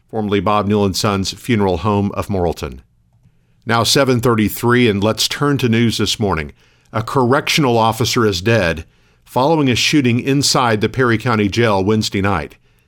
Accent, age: American, 50-69